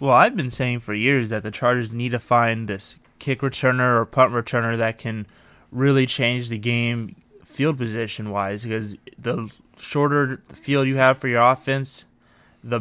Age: 20-39